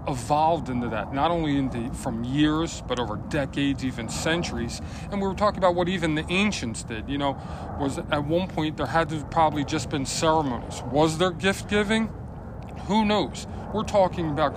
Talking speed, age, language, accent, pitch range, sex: 195 wpm, 40-59, English, American, 125-165 Hz, male